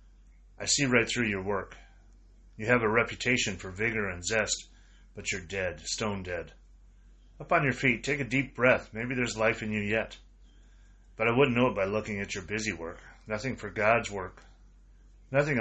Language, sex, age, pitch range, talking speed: English, male, 30-49, 95-115 Hz, 190 wpm